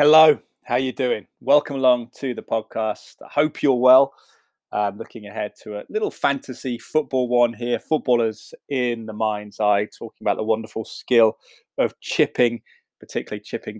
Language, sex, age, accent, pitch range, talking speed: English, male, 20-39, British, 100-120 Hz, 170 wpm